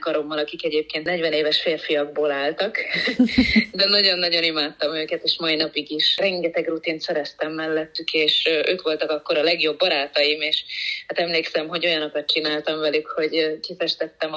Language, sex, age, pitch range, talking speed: Hungarian, female, 30-49, 155-205 Hz, 145 wpm